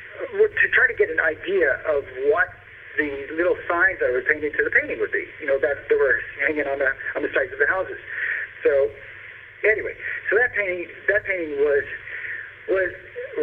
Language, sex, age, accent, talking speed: English, male, 50-69, American, 190 wpm